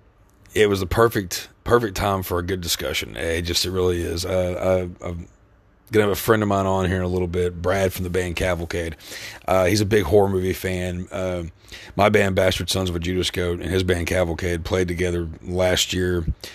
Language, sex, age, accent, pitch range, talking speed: English, male, 30-49, American, 90-100 Hz, 220 wpm